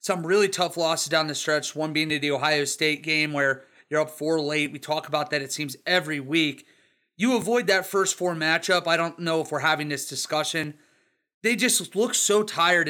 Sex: male